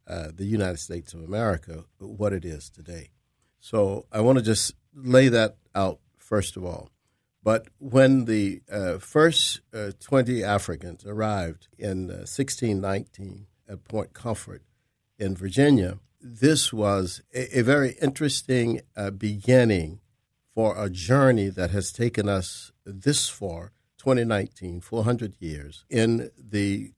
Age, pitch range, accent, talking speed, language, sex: 50-69, 95-125 Hz, American, 135 wpm, English, male